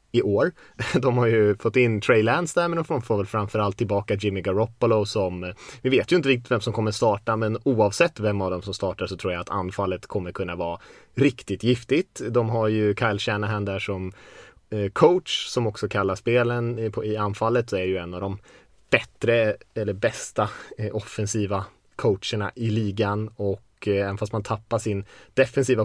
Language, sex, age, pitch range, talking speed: Swedish, male, 20-39, 100-115 Hz, 185 wpm